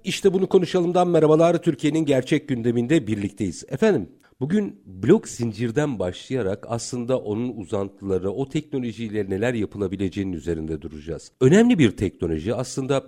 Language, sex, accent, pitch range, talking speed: Turkish, male, native, 100-145 Hz, 120 wpm